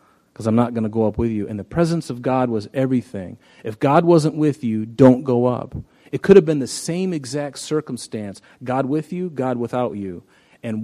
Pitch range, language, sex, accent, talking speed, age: 115-140 Hz, English, male, American, 215 wpm, 40-59